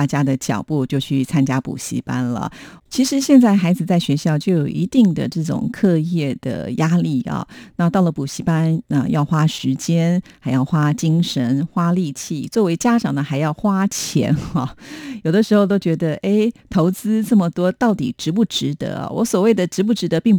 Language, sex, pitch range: Chinese, female, 150-200 Hz